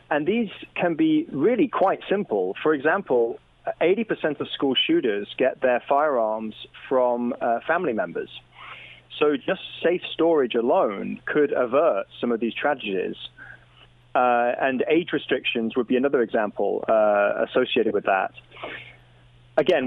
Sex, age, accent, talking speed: male, 30-49, British, 135 wpm